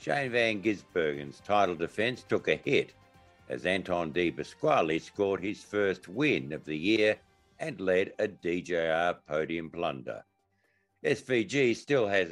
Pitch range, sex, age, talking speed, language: 85-110 Hz, male, 60-79, 135 wpm, English